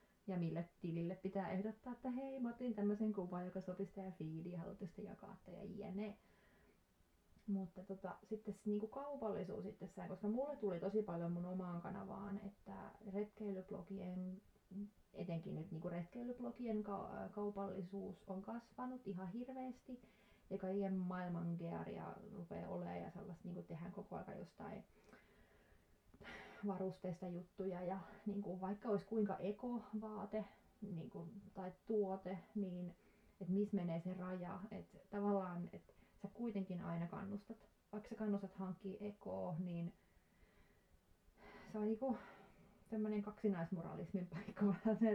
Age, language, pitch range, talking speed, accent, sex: 30-49, Finnish, 185-210 Hz, 120 wpm, native, female